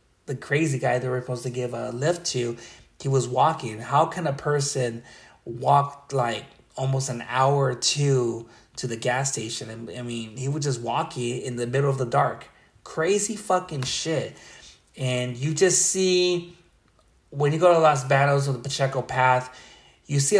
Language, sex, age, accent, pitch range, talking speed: English, male, 30-49, American, 125-150 Hz, 180 wpm